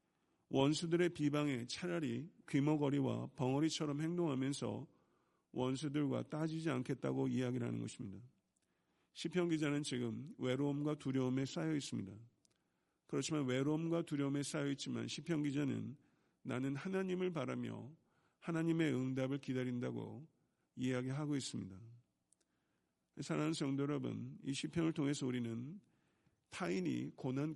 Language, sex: Korean, male